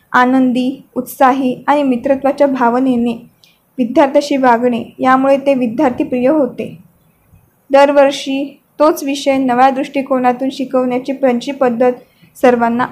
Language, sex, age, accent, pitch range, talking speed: Marathi, female, 20-39, native, 250-275 Hz, 100 wpm